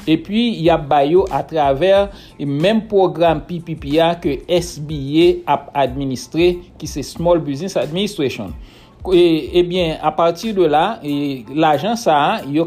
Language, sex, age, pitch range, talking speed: English, male, 60-79, 150-180 Hz, 150 wpm